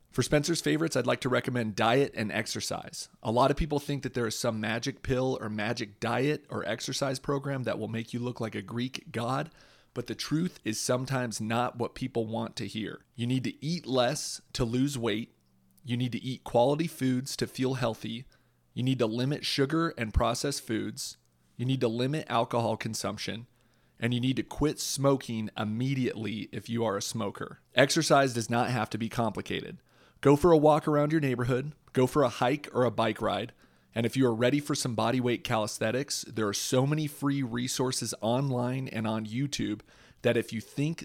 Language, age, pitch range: English, 40-59, 115-140 Hz